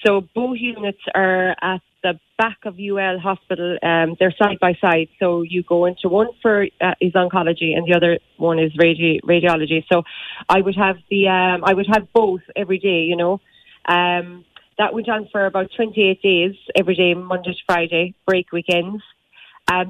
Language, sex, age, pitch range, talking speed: English, female, 30-49, 180-205 Hz, 185 wpm